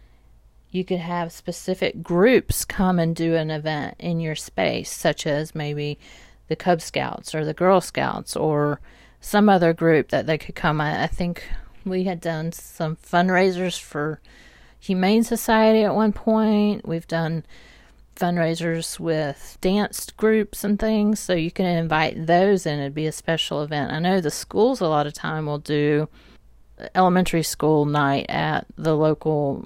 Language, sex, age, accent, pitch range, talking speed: English, female, 30-49, American, 150-185 Hz, 160 wpm